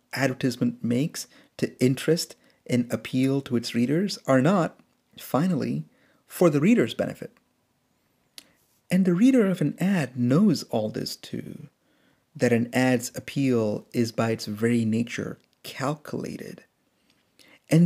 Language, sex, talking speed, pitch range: English, male, 125 wpm, 115-155 Hz